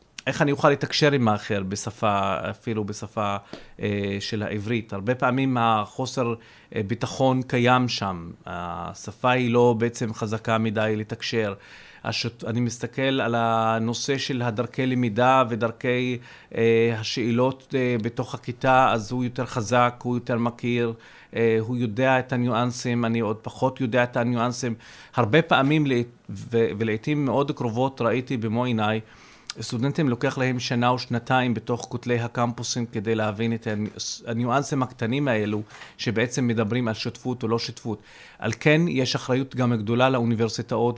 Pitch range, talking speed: 110-130 Hz, 135 wpm